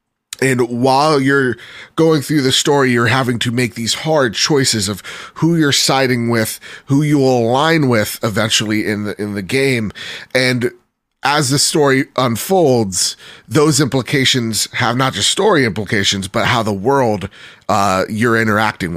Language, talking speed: English, 155 wpm